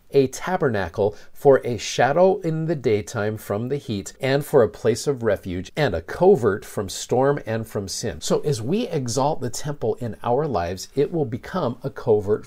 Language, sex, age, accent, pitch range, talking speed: English, male, 50-69, American, 105-140 Hz, 190 wpm